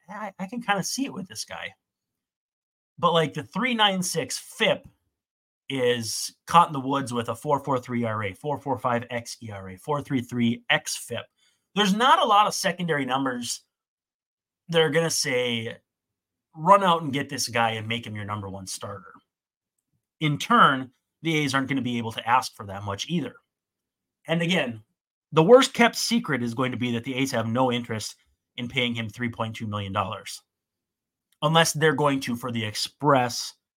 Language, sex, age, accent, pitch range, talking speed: English, male, 30-49, American, 110-160 Hz, 170 wpm